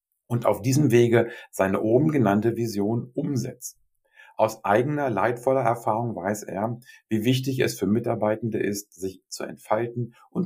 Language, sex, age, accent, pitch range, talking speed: German, male, 50-69, German, 100-135 Hz, 145 wpm